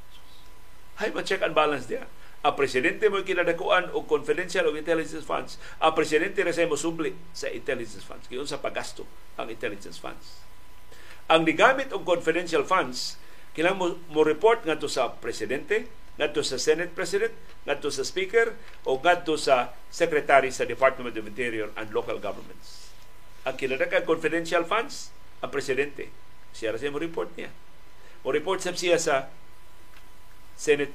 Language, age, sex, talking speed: Filipino, 50-69, male, 140 wpm